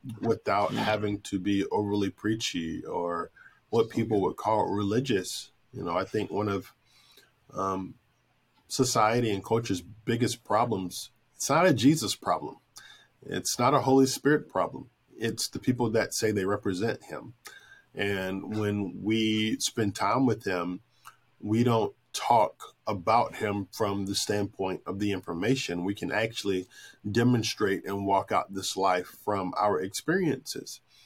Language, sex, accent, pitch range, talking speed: English, male, American, 100-120 Hz, 140 wpm